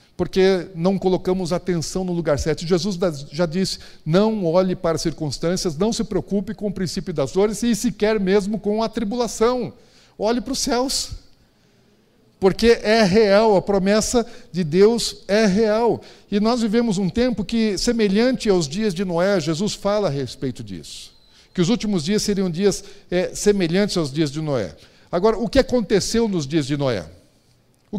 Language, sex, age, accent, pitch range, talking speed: Portuguese, male, 50-69, Brazilian, 175-215 Hz, 165 wpm